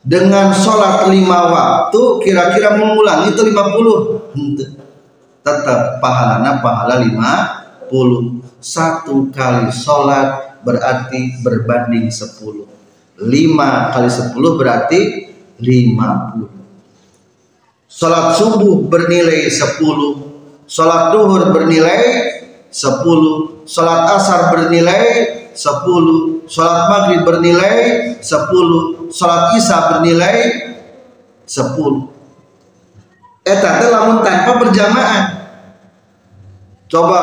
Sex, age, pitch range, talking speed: male, 40-59, 120-185 Hz, 85 wpm